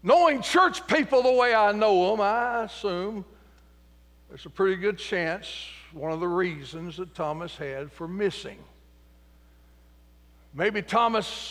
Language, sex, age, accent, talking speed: English, male, 60-79, American, 135 wpm